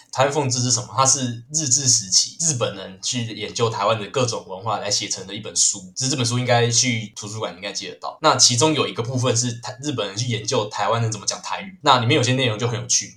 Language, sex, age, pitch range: Chinese, male, 20-39, 105-130 Hz